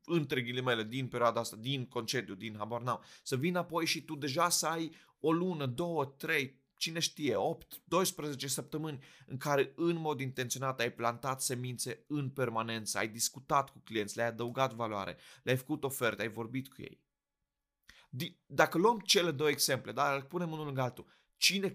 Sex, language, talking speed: male, Romanian, 170 wpm